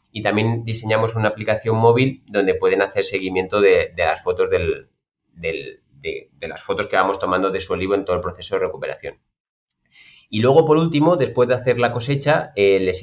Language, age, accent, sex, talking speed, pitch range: Spanish, 30-49, Spanish, male, 200 wpm, 100-120 Hz